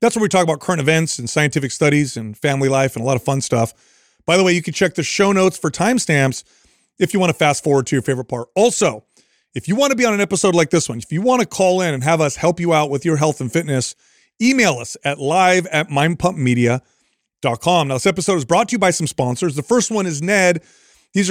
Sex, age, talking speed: male, 30-49, 255 wpm